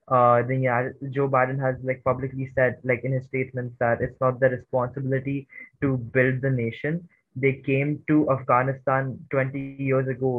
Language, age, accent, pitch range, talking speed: English, 20-39, Indian, 125-145 Hz, 170 wpm